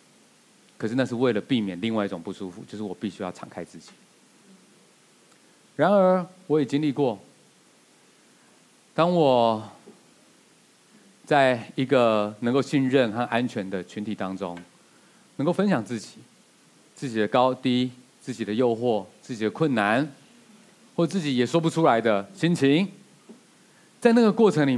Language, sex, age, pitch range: Chinese, male, 30-49, 115-185 Hz